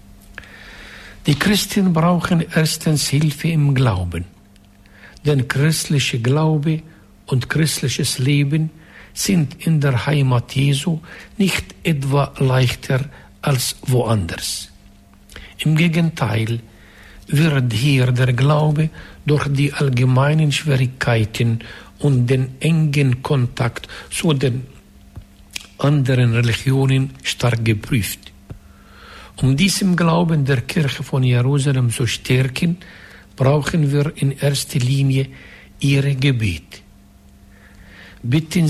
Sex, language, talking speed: male, German, 95 wpm